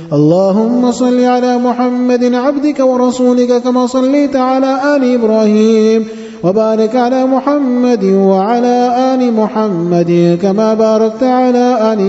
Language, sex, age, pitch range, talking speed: English, male, 30-49, 195-250 Hz, 105 wpm